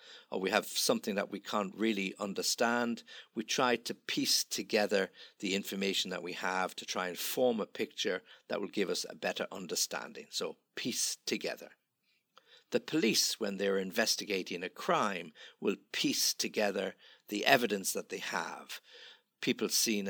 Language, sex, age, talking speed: English, male, 50-69, 155 wpm